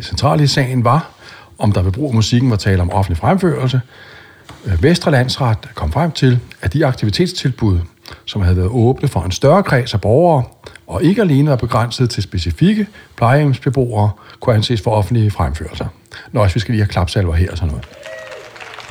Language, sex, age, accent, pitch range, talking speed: Danish, male, 60-79, native, 95-125 Hz, 175 wpm